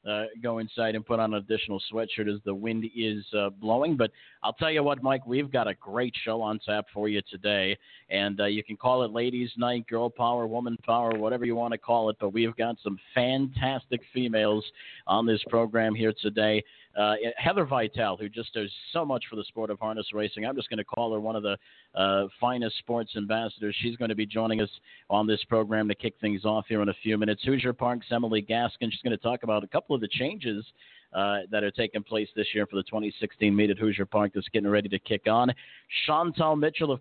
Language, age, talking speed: English, 50-69, 230 wpm